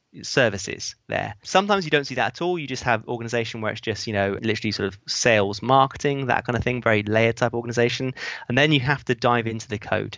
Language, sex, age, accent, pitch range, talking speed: English, male, 20-39, British, 110-130 Hz, 235 wpm